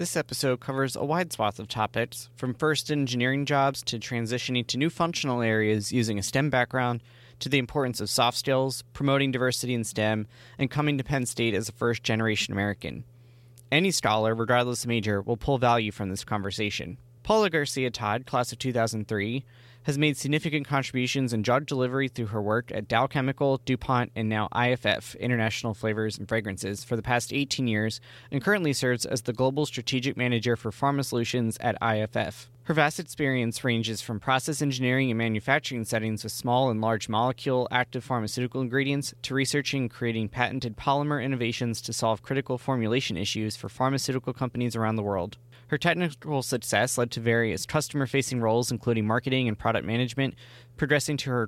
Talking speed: 175 wpm